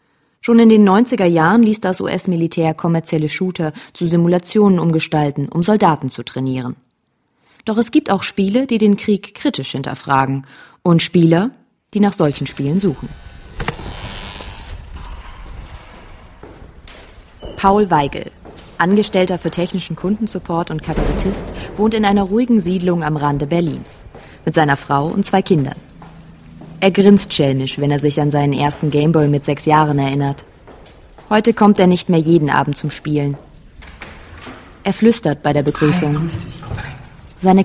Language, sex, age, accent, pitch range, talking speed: German, female, 20-39, German, 145-195 Hz, 135 wpm